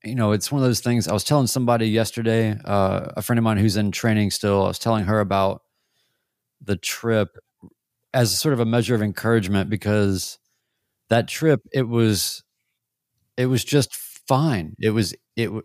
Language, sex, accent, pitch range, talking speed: English, male, American, 100-120 Hz, 185 wpm